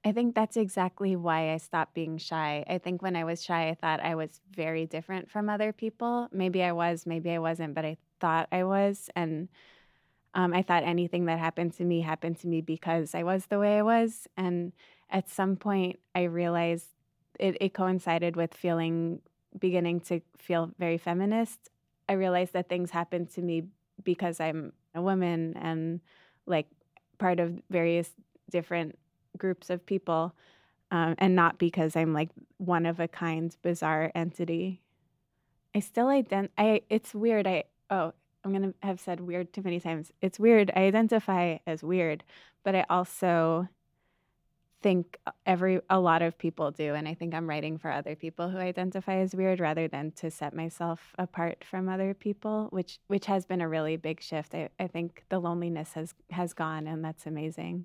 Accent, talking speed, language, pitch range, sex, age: American, 180 wpm, English, 160-185 Hz, female, 20-39